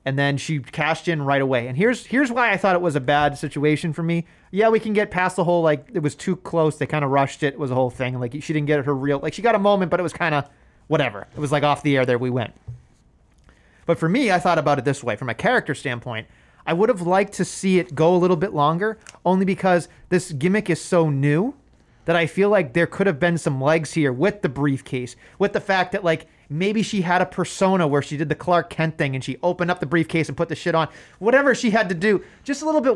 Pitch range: 145-190 Hz